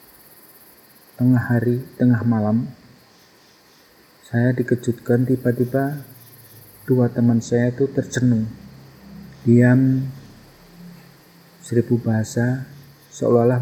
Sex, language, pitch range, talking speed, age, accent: male, Indonesian, 110-125 Hz, 70 wpm, 50-69, native